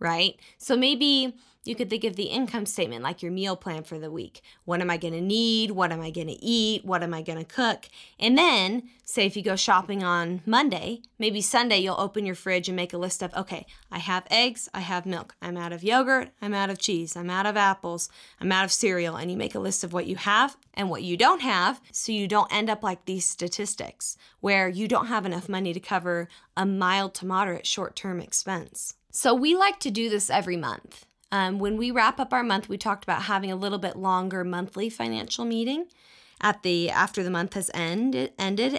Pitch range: 180-225 Hz